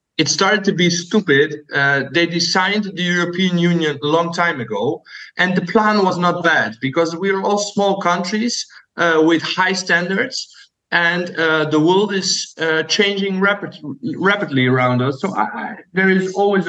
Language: English